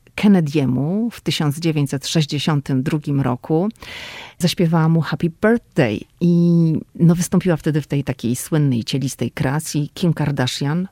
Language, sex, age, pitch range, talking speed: Polish, female, 40-59, 140-170 Hz, 110 wpm